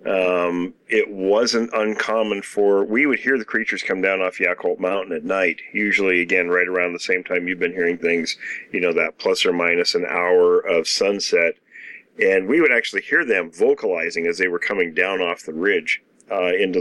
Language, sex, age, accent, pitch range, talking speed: English, male, 40-59, American, 90-110 Hz, 195 wpm